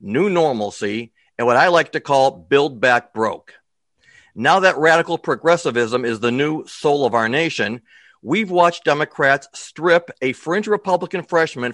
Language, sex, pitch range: English, male, 130-170 Hz